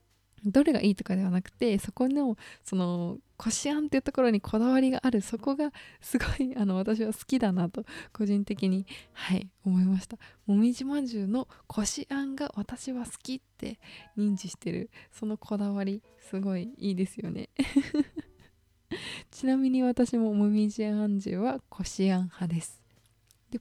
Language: Japanese